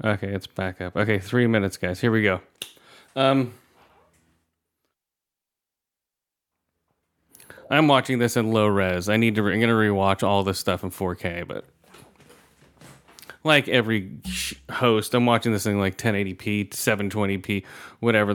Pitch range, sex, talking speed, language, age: 100-130 Hz, male, 135 wpm, English, 30-49